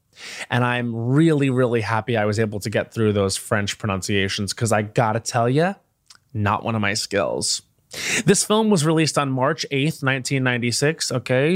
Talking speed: 175 wpm